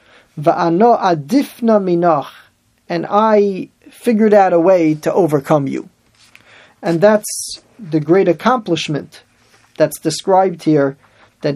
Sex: male